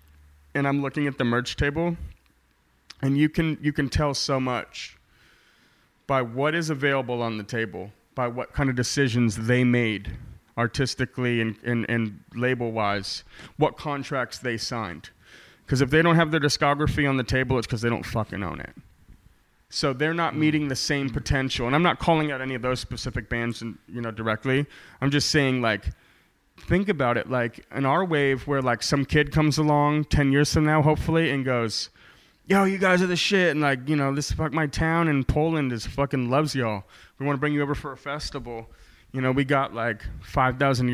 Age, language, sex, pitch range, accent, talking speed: 30-49, English, male, 115-145 Hz, American, 200 wpm